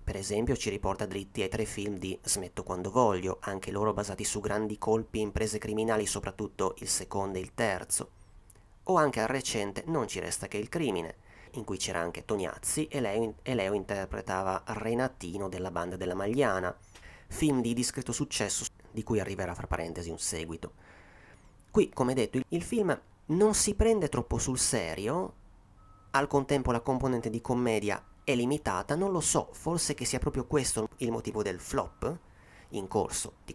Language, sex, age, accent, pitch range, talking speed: Italian, male, 30-49, native, 95-130 Hz, 175 wpm